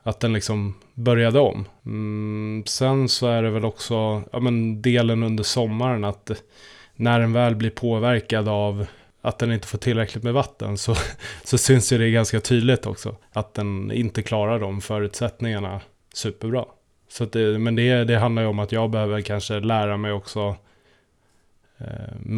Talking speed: 170 wpm